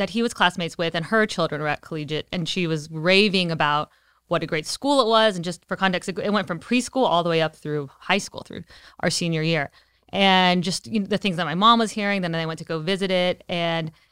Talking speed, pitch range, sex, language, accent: 255 wpm, 170-205 Hz, female, English, American